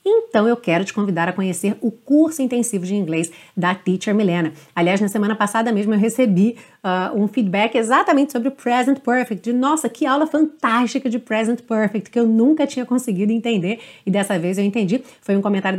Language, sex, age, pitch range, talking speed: Portuguese, female, 30-49, 190-250 Hz, 190 wpm